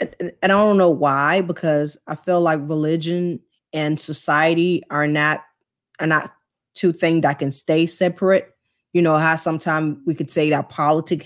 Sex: female